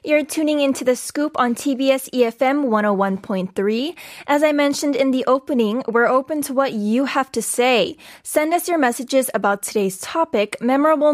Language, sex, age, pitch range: Korean, female, 10-29, 215-290 Hz